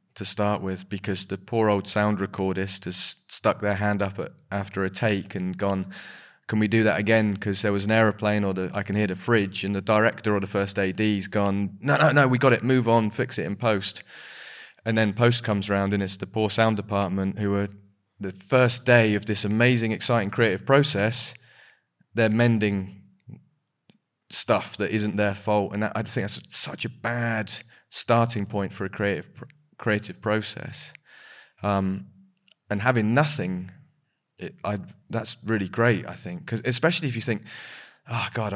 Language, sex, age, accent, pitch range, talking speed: English, male, 20-39, British, 100-120 Hz, 175 wpm